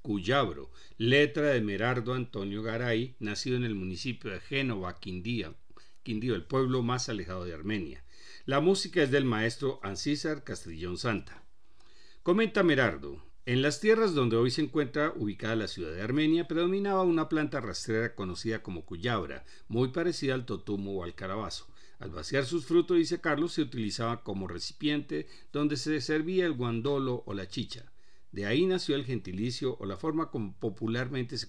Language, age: Spanish, 50-69